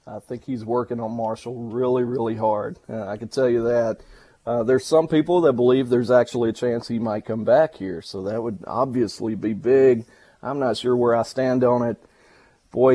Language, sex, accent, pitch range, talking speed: English, male, American, 115-135 Hz, 210 wpm